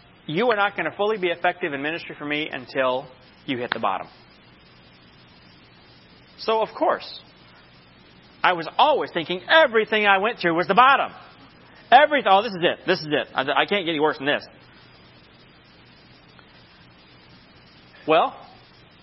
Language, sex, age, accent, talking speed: English, male, 40-59, American, 150 wpm